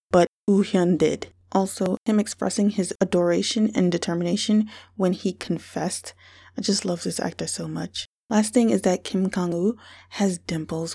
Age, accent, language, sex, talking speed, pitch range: 20-39, American, English, female, 160 wpm, 170-205 Hz